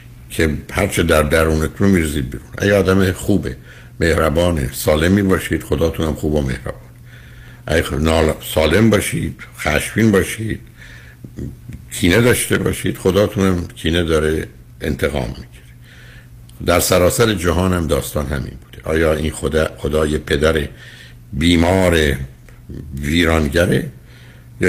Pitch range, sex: 70-90 Hz, male